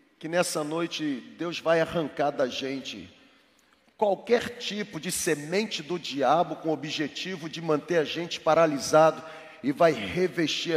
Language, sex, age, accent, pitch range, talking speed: Portuguese, male, 40-59, Brazilian, 160-205 Hz, 140 wpm